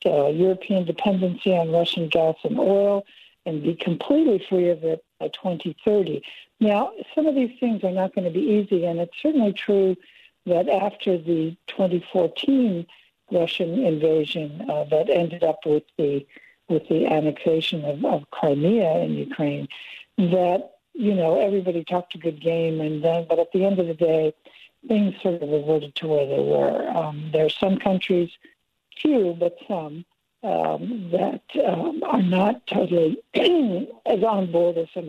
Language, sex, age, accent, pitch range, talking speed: English, female, 60-79, American, 155-195 Hz, 160 wpm